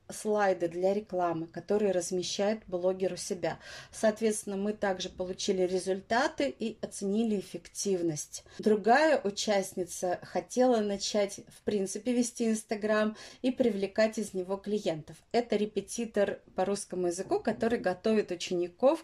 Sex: female